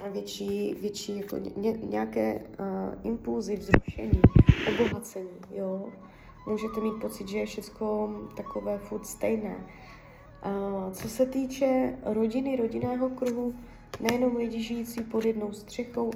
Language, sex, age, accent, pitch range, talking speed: Czech, female, 20-39, native, 200-230 Hz, 105 wpm